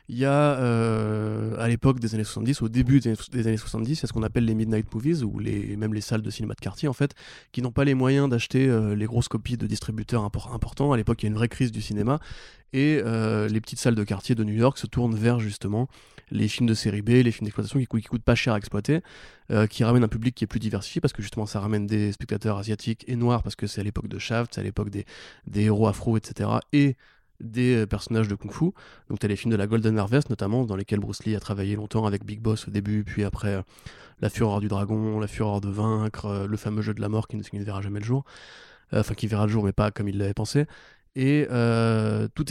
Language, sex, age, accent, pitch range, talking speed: French, male, 20-39, French, 105-120 Hz, 265 wpm